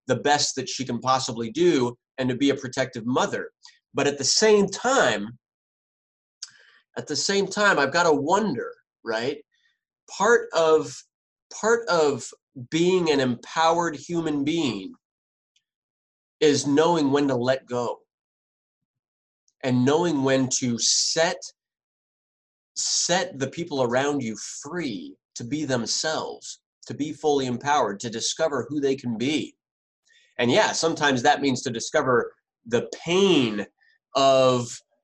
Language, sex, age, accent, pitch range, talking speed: English, male, 30-49, American, 125-170 Hz, 130 wpm